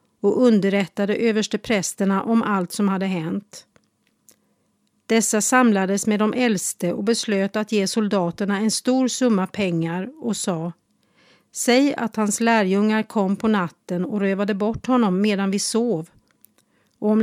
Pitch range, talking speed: 190-225 Hz, 140 wpm